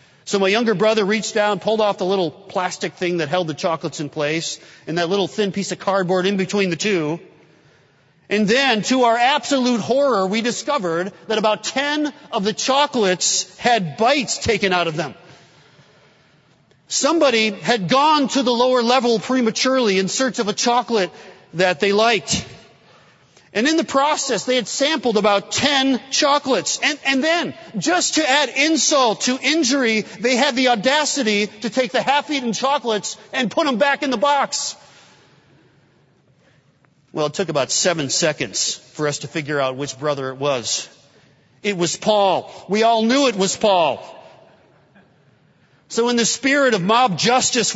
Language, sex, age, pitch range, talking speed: English, male, 40-59, 180-255 Hz, 165 wpm